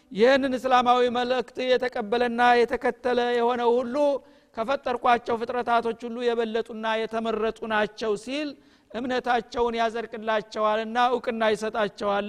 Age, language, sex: 50-69, Amharic, male